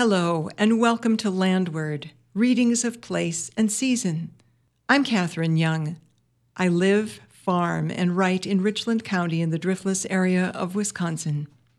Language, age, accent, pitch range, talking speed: English, 60-79, American, 160-200 Hz, 135 wpm